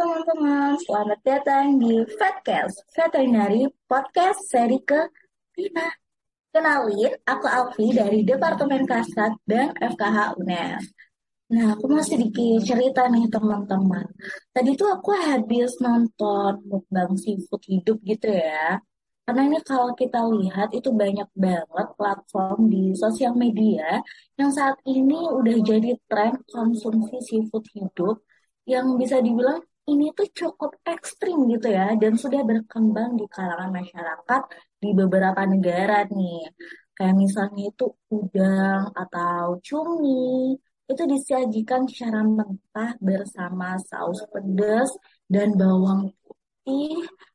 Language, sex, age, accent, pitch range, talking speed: Indonesian, female, 20-39, native, 205-275 Hz, 115 wpm